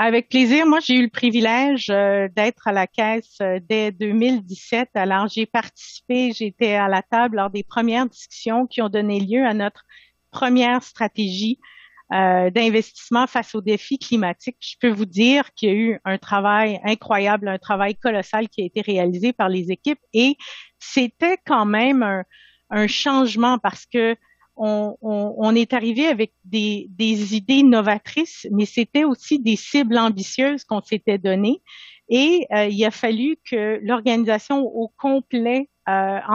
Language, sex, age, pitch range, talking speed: French, female, 50-69, 205-250 Hz, 160 wpm